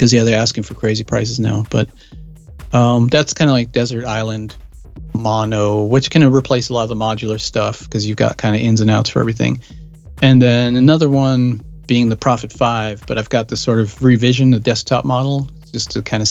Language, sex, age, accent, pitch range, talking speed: English, male, 40-59, American, 110-130 Hz, 210 wpm